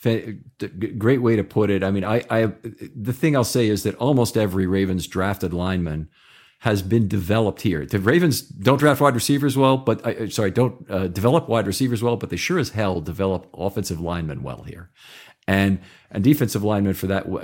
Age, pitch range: 50-69, 95-125 Hz